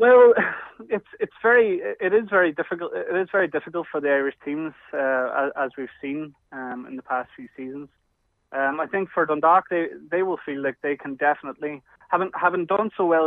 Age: 20-39